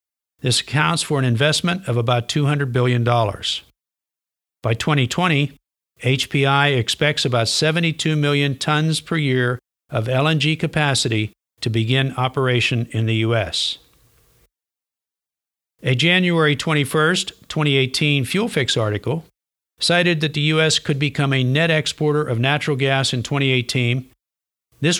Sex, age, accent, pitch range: male, 50-69, American, 125-150 Hz